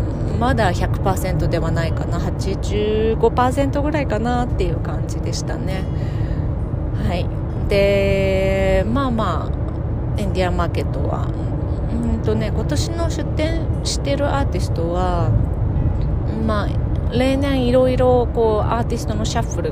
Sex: female